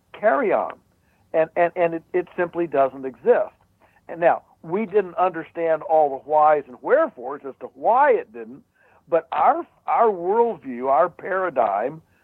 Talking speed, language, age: 150 wpm, English, 60-79